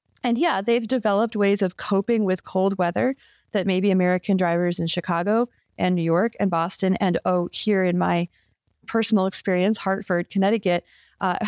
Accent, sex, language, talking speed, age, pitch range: American, female, English, 160 wpm, 30-49, 185-235 Hz